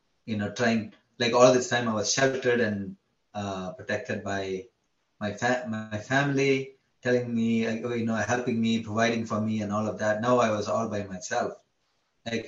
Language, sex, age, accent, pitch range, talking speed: English, male, 20-39, Indian, 105-125 Hz, 185 wpm